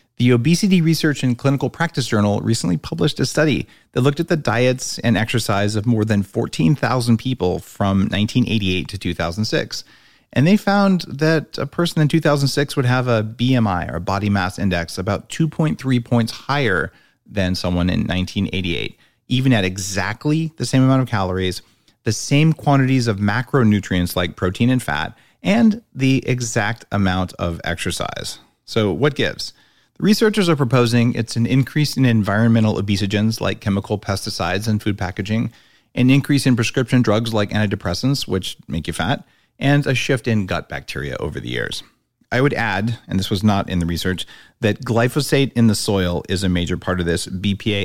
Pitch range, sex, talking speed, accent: 95-130 Hz, male, 170 wpm, American